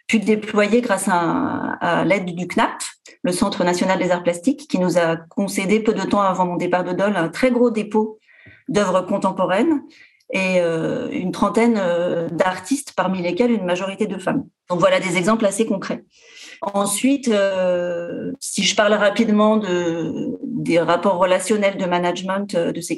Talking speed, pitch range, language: 170 wpm, 180-245 Hz, French